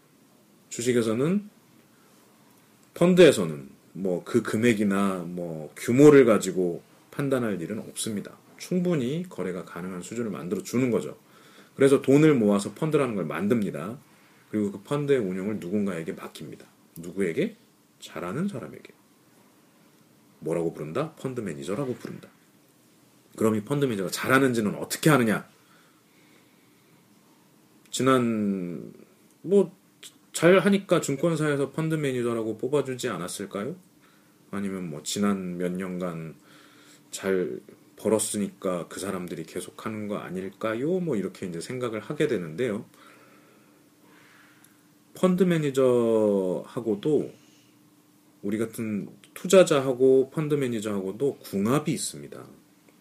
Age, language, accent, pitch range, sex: 40-59, Korean, native, 100-145 Hz, male